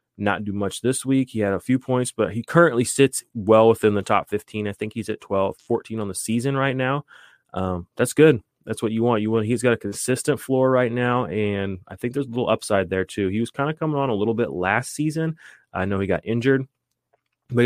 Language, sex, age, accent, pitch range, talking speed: English, male, 20-39, American, 95-120 Hz, 245 wpm